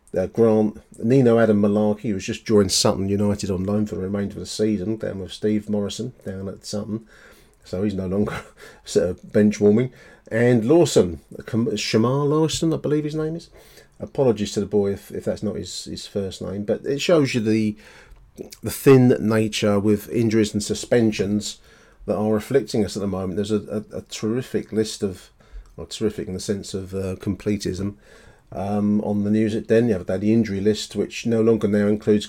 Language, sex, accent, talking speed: English, male, British, 190 wpm